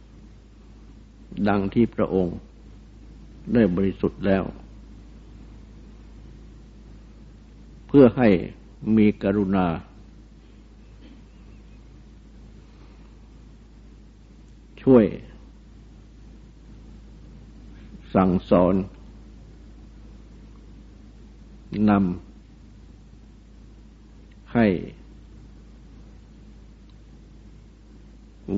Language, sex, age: Thai, male, 60-79